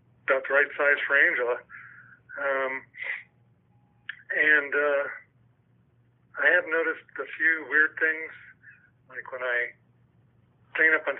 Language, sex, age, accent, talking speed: English, male, 50-69, American, 120 wpm